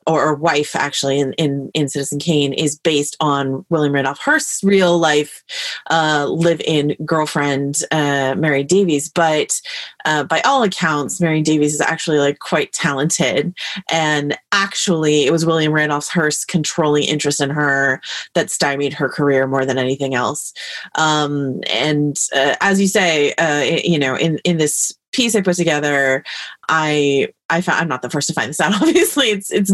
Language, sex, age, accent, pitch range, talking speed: English, female, 30-49, American, 145-180 Hz, 170 wpm